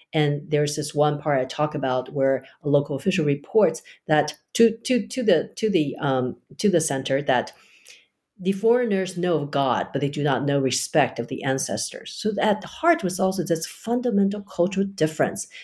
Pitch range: 130-170 Hz